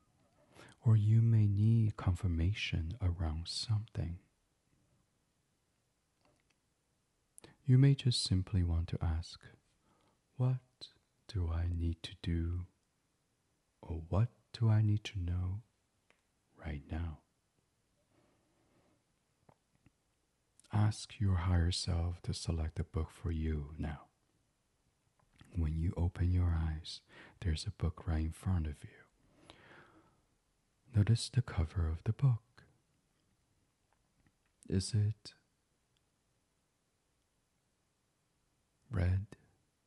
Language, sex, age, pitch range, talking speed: English, male, 40-59, 85-110 Hz, 95 wpm